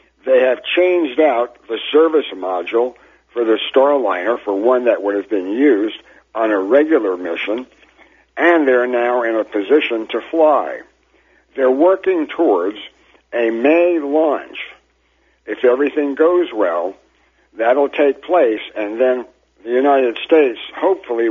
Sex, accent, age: male, American, 60-79